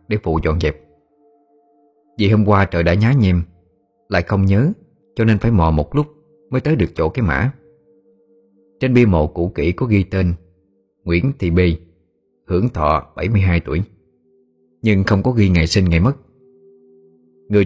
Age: 20-39